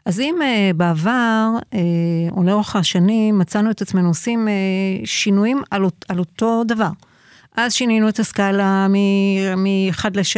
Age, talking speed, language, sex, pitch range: 50-69, 145 wpm, Hebrew, female, 180-215 Hz